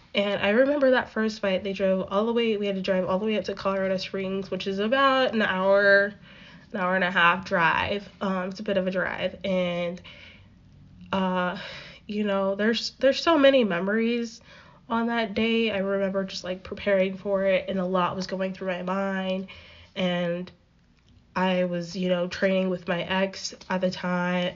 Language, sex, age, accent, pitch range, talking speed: English, female, 10-29, American, 185-210 Hz, 195 wpm